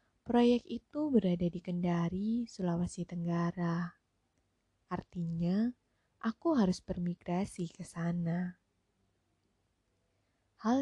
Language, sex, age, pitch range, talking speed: Indonesian, female, 20-39, 170-210 Hz, 80 wpm